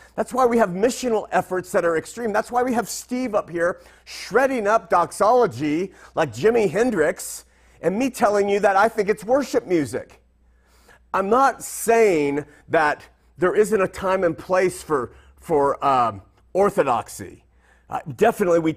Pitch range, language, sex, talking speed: 130-200 Hz, English, male, 155 wpm